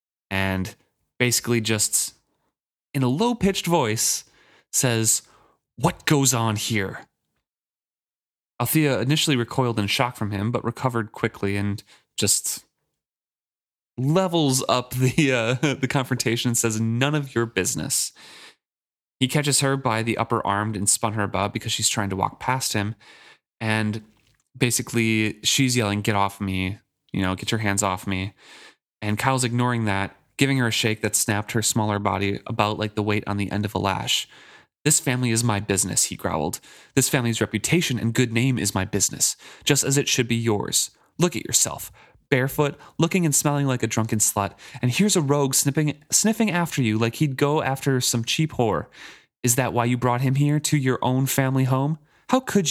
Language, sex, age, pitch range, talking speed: English, male, 20-39, 110-140 Hz, 175 wpm